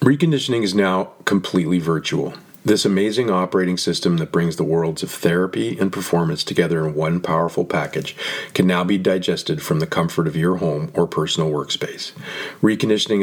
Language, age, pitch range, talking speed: English, 40-59, 85-100 Hz, 165 wpm